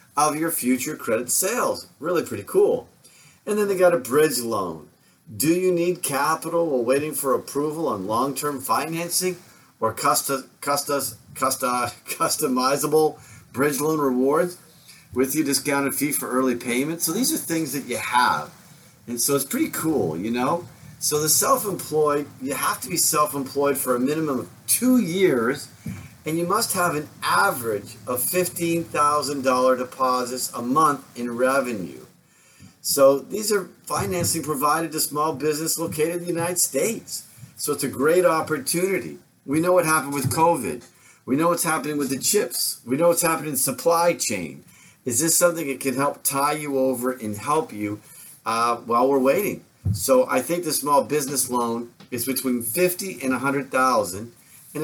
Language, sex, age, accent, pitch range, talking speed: English, male, 40-59, American, 130-170 Hz, 160 wpm